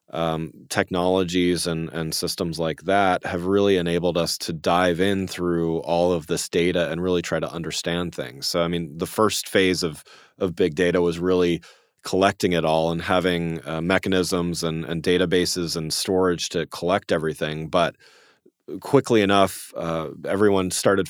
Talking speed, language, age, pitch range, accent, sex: 165 wpm, English, 30-49, 85-100 Hz, American, male